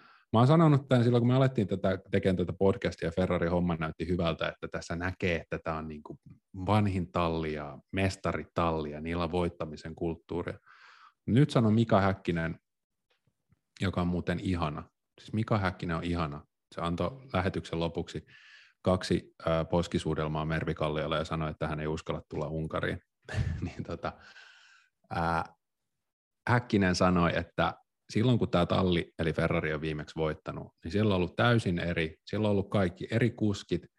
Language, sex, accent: Finnish, male, native